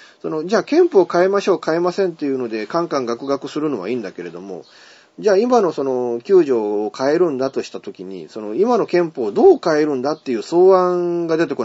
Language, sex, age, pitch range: Japanese, male, 30-49, 115-180 Hz